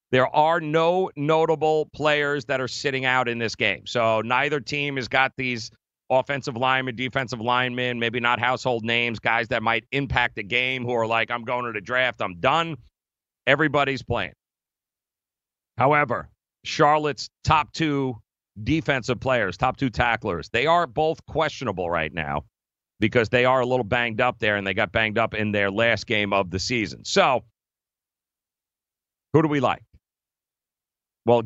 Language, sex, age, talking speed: English, male, 40-59, 160 wpm